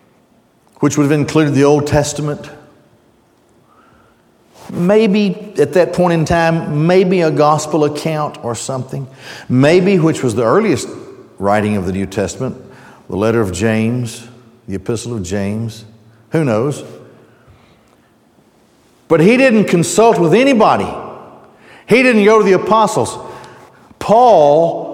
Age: 50-69